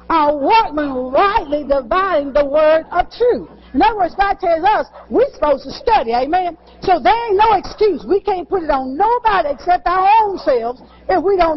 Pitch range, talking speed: 255-385 Hz, 190 wpm